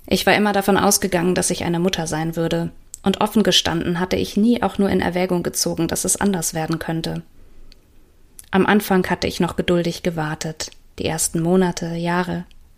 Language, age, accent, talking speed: German, 30-49, German, 180 wpm